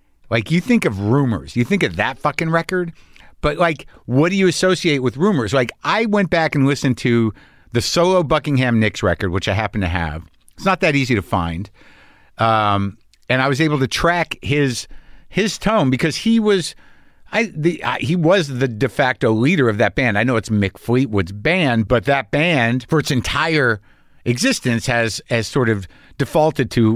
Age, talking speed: 50-69, 190 wpm